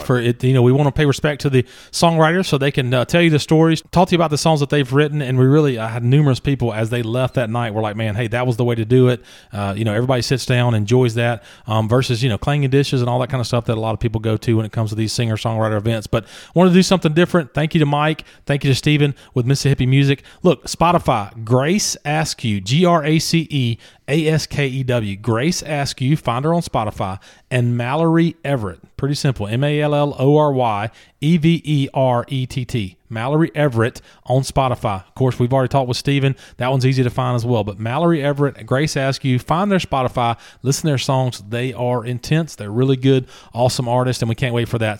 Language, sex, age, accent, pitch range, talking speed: English, male, 30-49, American, 120-155 Hz, 230 wpm